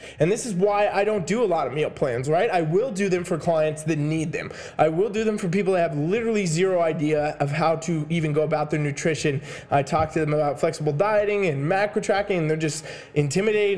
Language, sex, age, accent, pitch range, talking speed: English, male, 20-39, American, 155-195 Hz, 240 wpm